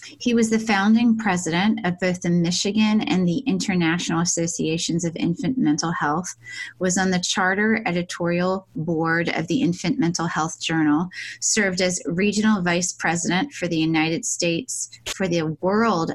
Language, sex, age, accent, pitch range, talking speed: English, female, 20-39, American, 170-205 Hz, 150 wpm